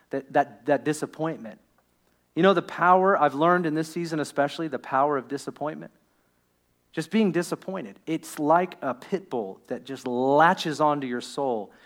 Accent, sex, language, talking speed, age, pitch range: American, male, English, 160 wpm, 40-59, 115-145 Hz